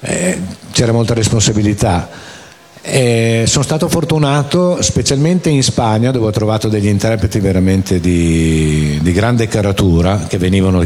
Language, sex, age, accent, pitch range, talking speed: Italian, male, 50-69, native, 90-110 Hz, 125 wpm